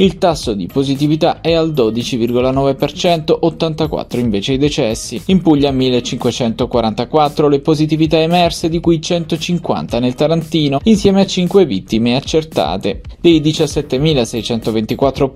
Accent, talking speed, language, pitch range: native, 115 wpm, Italian, 110-150 Hz